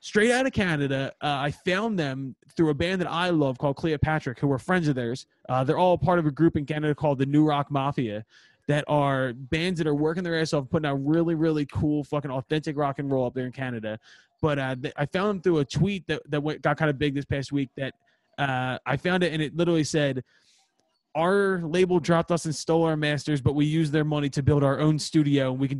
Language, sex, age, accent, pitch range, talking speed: English, male, 20-39, American, 135-165 Hz, 250 wpm